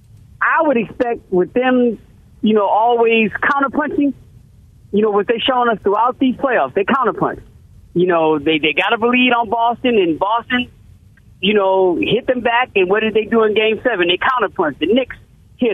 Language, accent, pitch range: English, American, 190-260 Hz